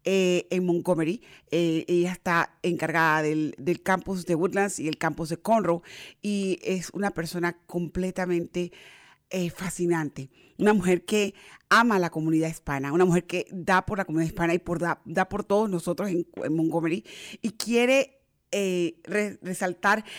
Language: English